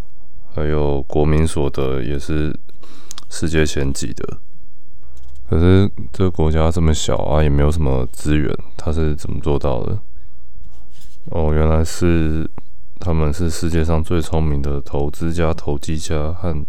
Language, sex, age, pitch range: Chinese, male, 20-39, 75-85 Hz